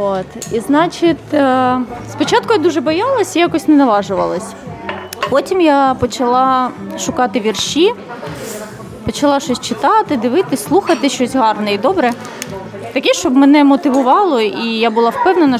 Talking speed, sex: 125 wpm, female